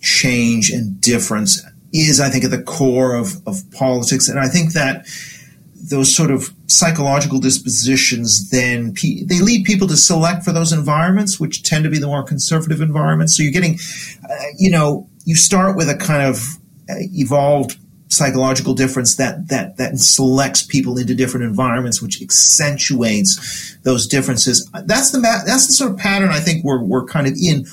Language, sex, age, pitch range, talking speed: English, male, 40-59, 130-175 Hz, 175 wpm